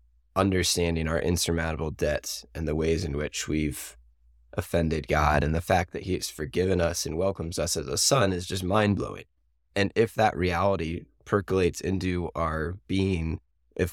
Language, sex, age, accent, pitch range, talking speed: English, male, 20-39, American, 75-95 Hz, 165 wpm